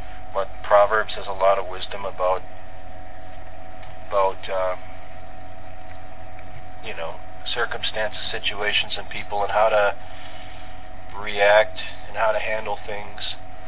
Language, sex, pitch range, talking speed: English, male, 95-110 Hz, 110 wpm